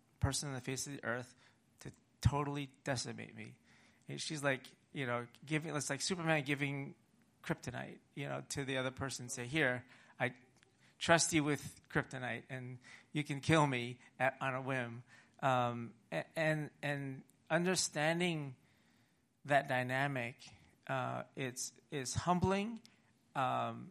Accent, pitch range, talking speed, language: American, 125-145 Hz, 140 wpm, English